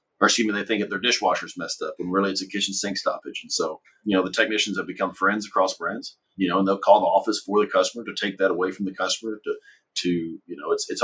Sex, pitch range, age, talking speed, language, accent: male, 95-135 Hz, 40-59, 275 wpm, English, American